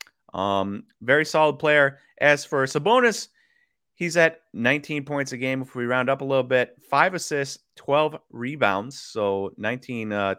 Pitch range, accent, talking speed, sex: 110-150 Hz, American, 155 wpm, male